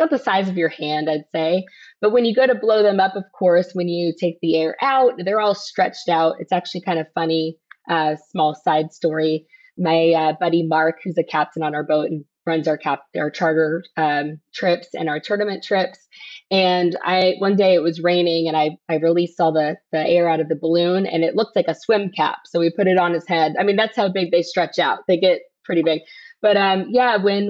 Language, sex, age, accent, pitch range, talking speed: English, female, 20-39, American, 165-205 Hz, 235 wpm